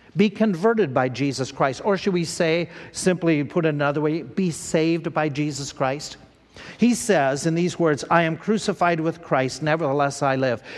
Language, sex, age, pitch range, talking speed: English, male, 50-69, 145-195 Hz, 180 wpm